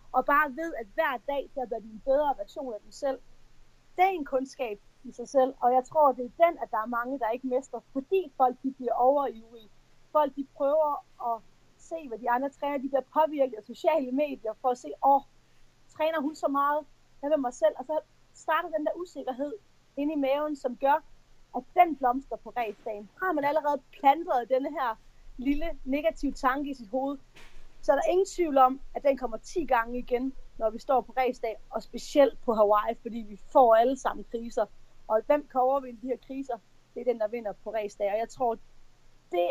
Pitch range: 230-285 Hz